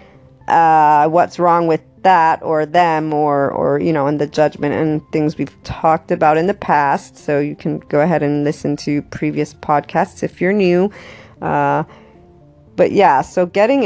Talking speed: 175 wpm